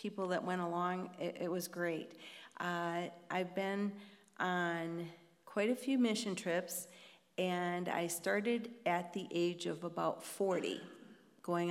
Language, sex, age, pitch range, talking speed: English, female, 40-59, 175-200 Hz, 140 wpm